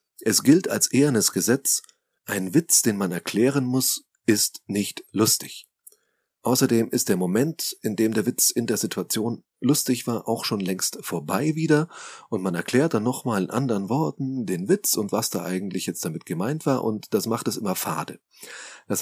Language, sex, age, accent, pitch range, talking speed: German, male, 30-49, German, 95-130 Hz, 180 wpm